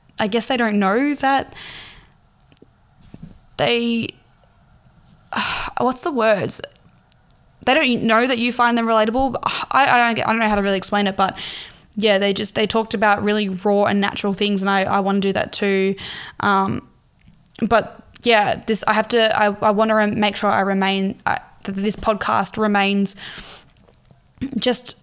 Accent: Australian